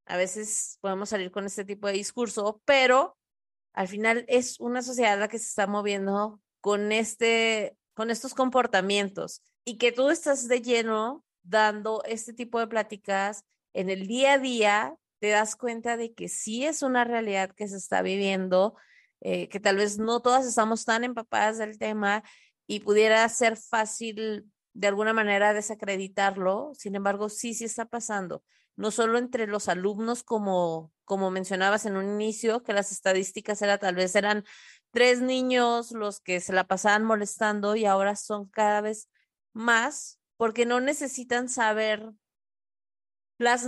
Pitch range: 200-240 Hz